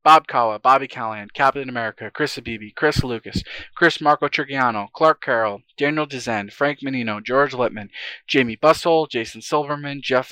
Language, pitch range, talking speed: English, 120-145 Hz, 150 wpm